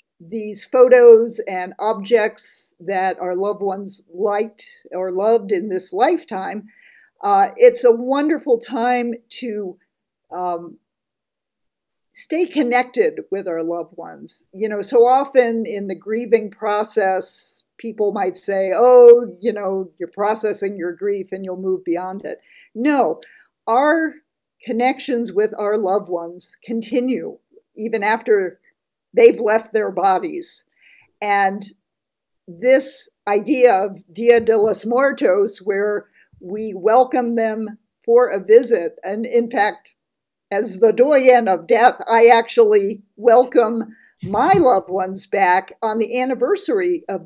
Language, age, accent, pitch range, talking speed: English, 50-69, American, 195-250 Hz, 125 wpm